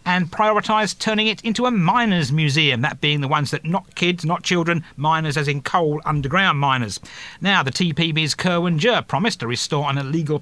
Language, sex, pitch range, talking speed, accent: English, male, 140-200 Hz, 185 wpm, British